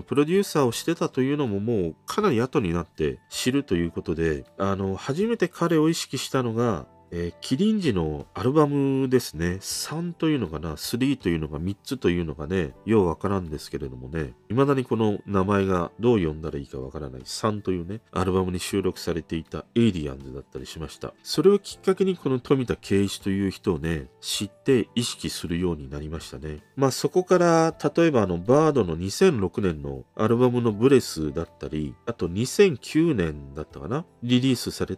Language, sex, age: Japanese, male, 40-59